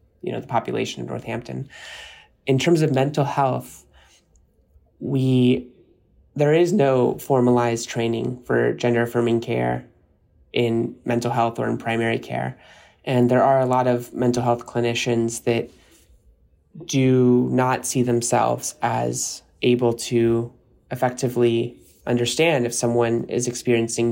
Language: English